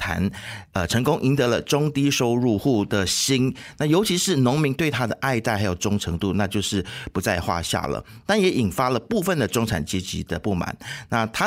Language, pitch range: Chinese, 100-145 Hz